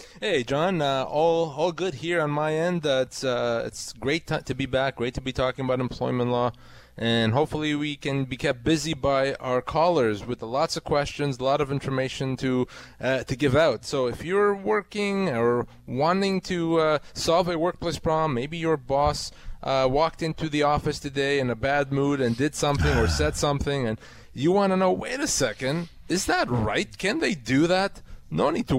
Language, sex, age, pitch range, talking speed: English, male, 20-39, 120-155 Hz, 205 wpm